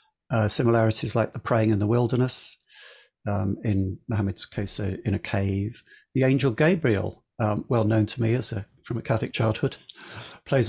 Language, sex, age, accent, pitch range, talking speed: English, male, 50-69, British, 105-130 Hz, 175 wpm